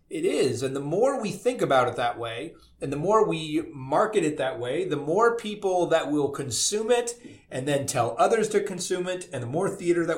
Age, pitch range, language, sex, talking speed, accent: 30-49, 135-185 Hz, English, male, 225 wpm, American